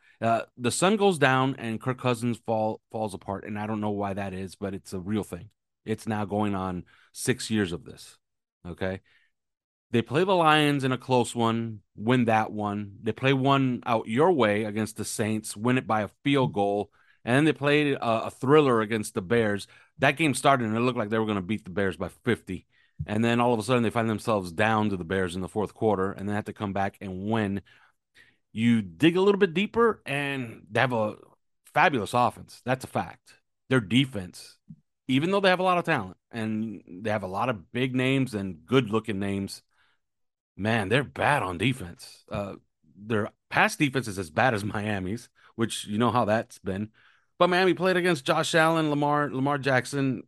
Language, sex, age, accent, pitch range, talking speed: English, male, 30-49, American, 105-130 Hz, 210 wpm